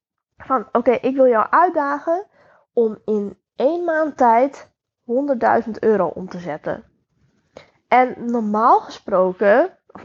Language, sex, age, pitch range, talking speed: Dutch, female, 10-29, 200-265 Hz, 120 wpm